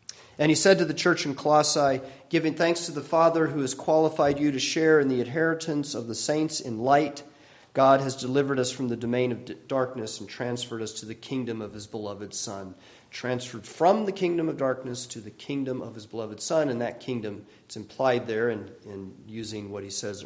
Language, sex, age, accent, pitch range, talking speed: English, male, 40-59, American, 120-160 Hz, 210 wpm